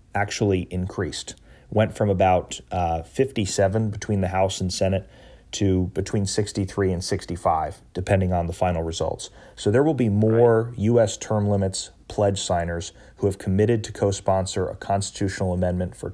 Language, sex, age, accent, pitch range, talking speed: English, male, 30-49, American, 90-105 Hz, 155 wpm